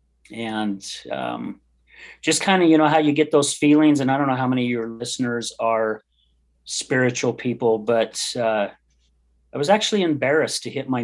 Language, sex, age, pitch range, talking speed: English, male, 40-59, 105-130 Hz, 180 wpm